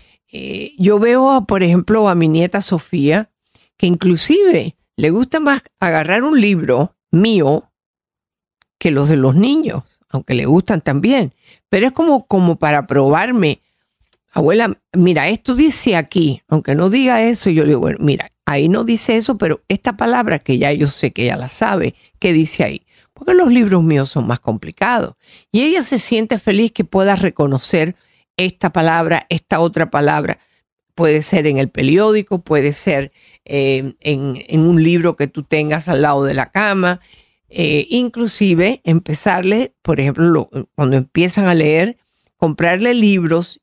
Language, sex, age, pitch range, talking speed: Spanish, female, 50-69, 150-210 Hz, 160 wpm